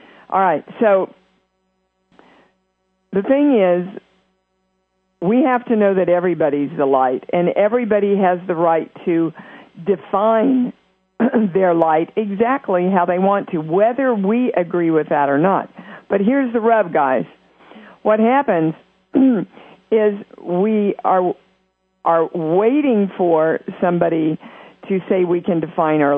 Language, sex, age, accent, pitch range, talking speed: English, female, 50-69, American, 175-215 Hz, 125 wpm